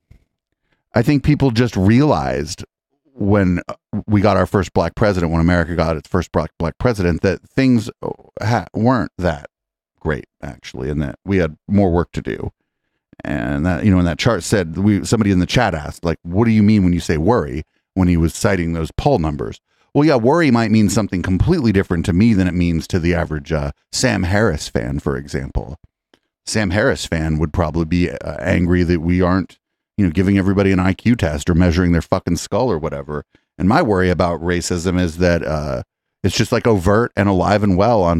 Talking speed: 200 wpm